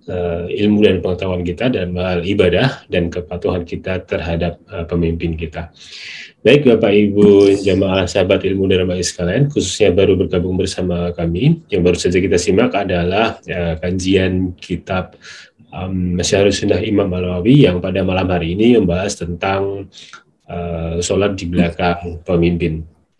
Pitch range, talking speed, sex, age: 85-100 Hz, 135 wpm, male, 30-49